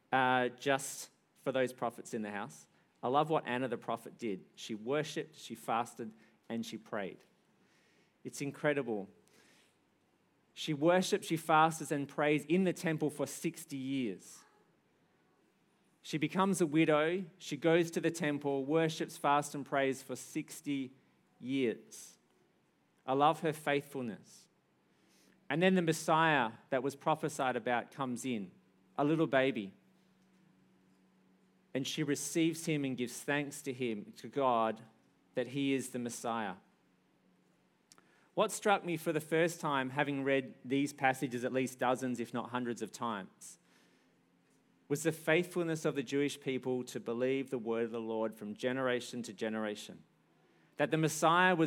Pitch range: 125-160 Hz